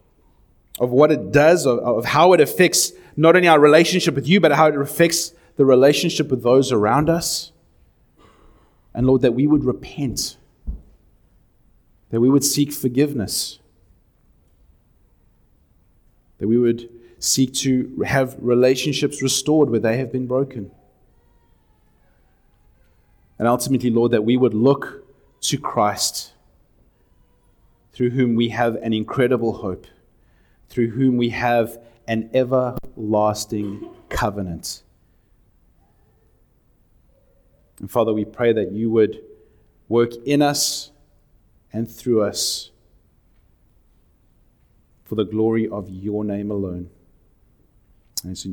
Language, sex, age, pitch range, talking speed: English, male, 30-49, 100-135 Hz, 115 wpm